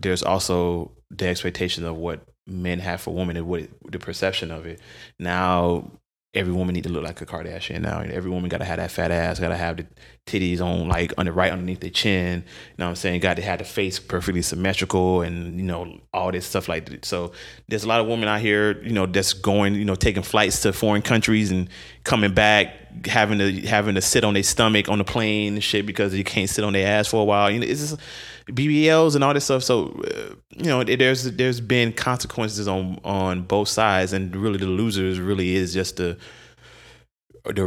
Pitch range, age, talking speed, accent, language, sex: 90-105 Hz, 20-39, 230 wpm, American, English, male